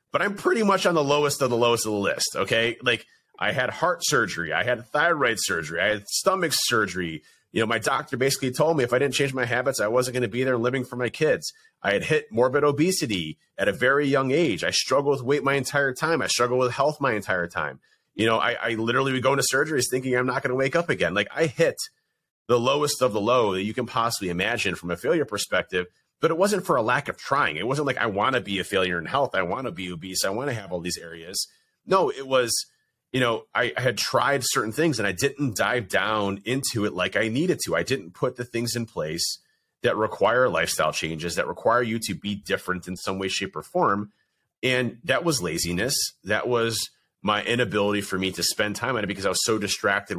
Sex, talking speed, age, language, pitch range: male, 245 wpm, 30-49, English, 100-140 Hz